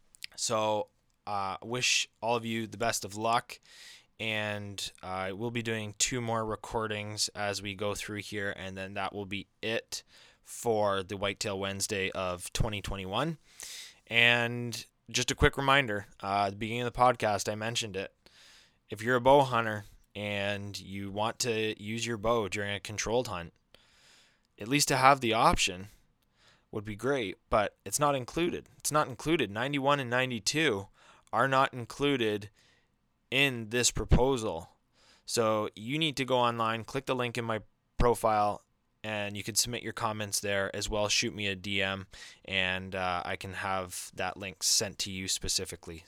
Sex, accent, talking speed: male, American, 165 wpm